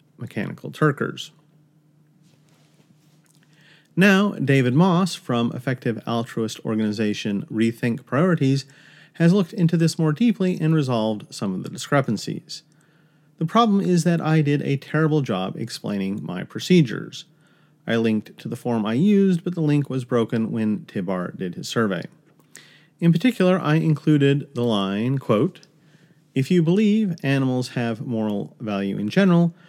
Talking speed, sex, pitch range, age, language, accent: 135 wpm, male, 125-165 Hz, 40-59, English, American